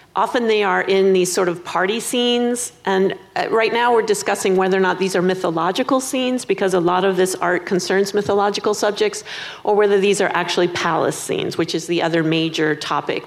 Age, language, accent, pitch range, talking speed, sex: 40-59, English, American, 175-205 Hz, 195 wpm, female